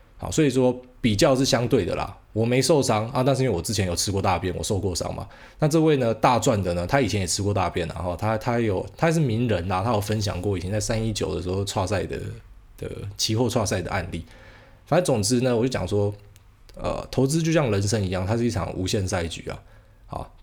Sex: male